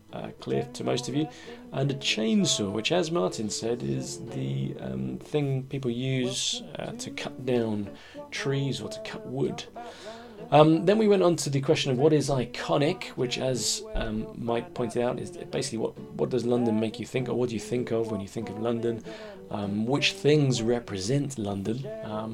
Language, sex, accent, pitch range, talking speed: English, male, British, 110-160 Hz, 195 wpm